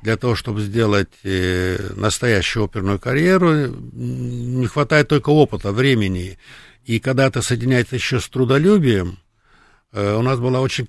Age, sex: 60-79, male